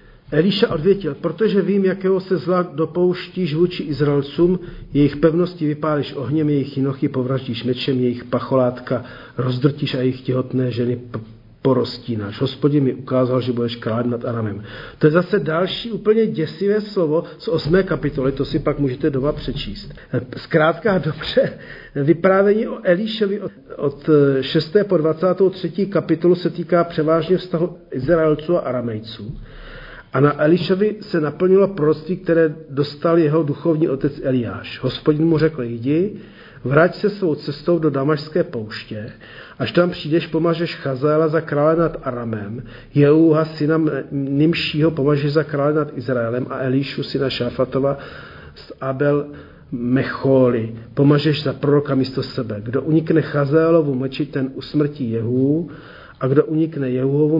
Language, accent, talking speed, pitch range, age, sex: Czech, native, 135 wpm, 130-170 Hz, 50-69, male